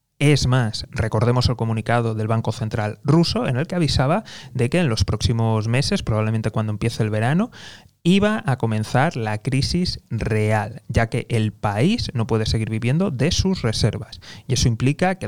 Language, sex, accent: Spanish, male, Spanish